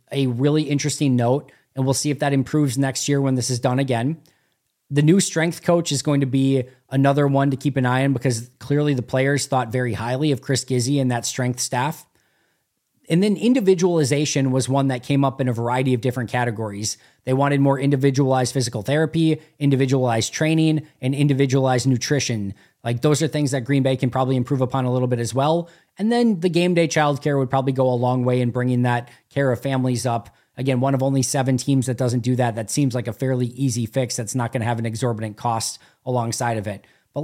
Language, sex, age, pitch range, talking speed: English, male, 20-39, 125-155 Hz, 215 wpm